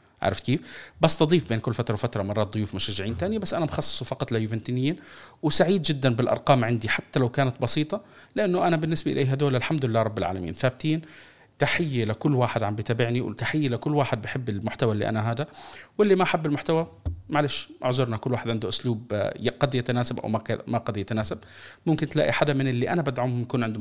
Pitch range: 110-150 Hz